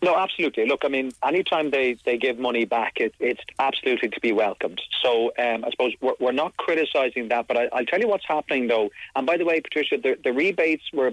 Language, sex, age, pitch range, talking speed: English, male, 40-59, 115-145 Hz, 230 wpm